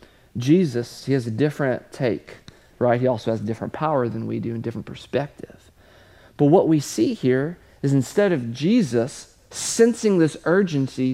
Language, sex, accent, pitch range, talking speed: English, male, American, 120-165 Hz, 165 wpm